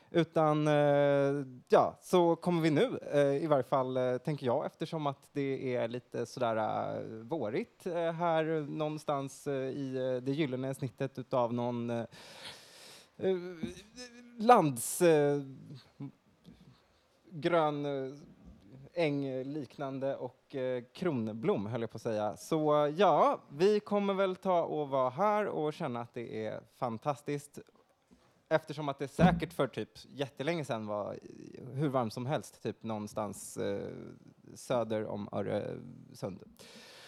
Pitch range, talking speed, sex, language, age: 130-165 Hz, 115 wpm, male, Swedish, 20-39